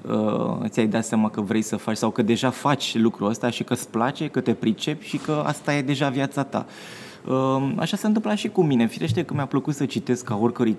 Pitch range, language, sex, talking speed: 110-150 Hz, Romanian, male, 230 wpm